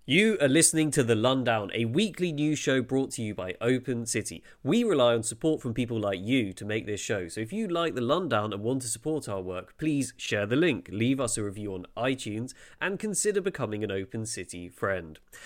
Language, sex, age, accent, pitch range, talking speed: English, male, 30-49, British, 105-150 Hz, 220 wpm